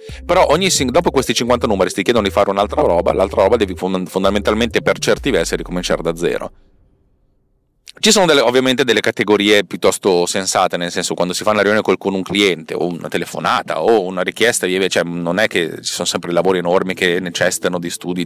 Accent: native